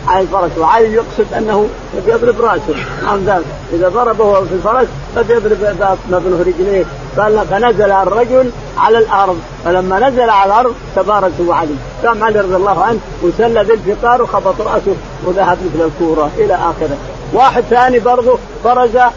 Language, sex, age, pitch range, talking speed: Arabic, male, 50-69, 185-235 Hz, 140 wpm